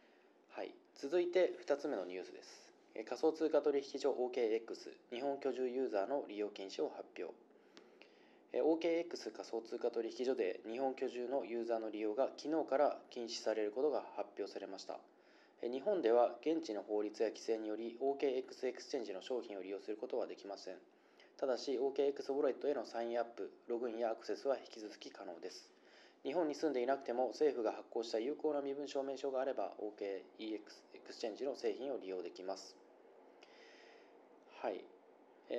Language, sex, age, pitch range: Japanese, male, 20-39, 115-165 Hz